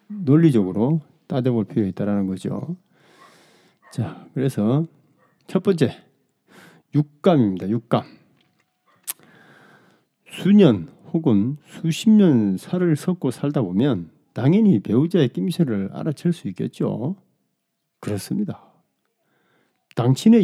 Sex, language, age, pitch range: male, Korean, 40-59, 120-175 Hz